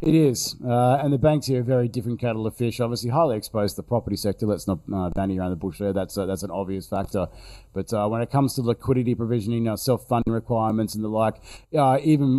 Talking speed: 250 wpm